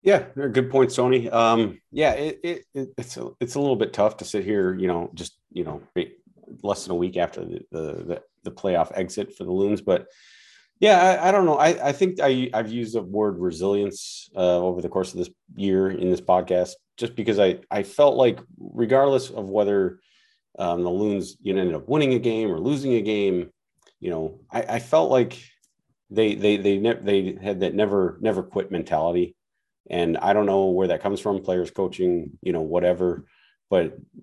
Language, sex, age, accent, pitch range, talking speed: English, male, 40-59, American, 90-115 Hz, 205 wpm